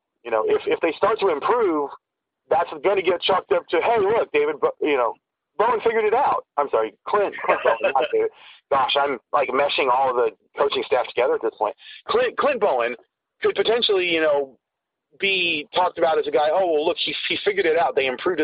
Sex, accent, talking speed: male, American, 215 wpm